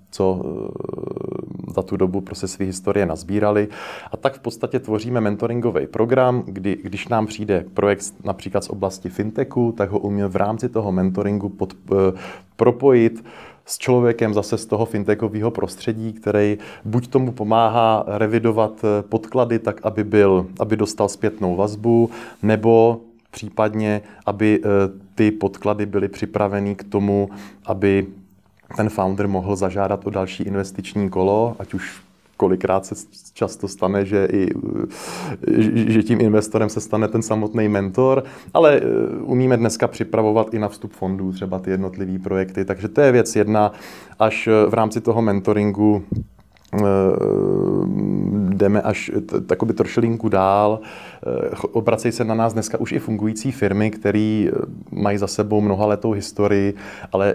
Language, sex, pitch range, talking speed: Czech, male, 100-110 Hz, 140 wpm